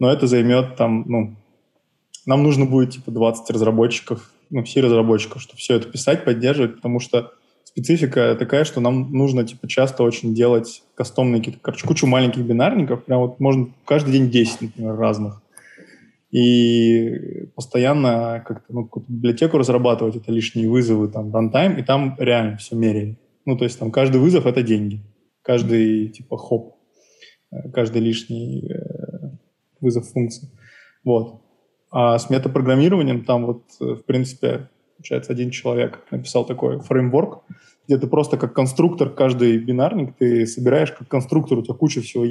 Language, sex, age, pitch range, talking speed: Russian, male, 20-39, 115-135 Hz, 150 wpm